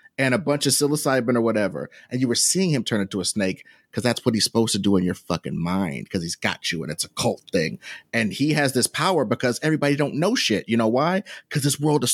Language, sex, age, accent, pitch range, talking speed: English, male, 30-49, American, 135-200 Hz, 260 wpm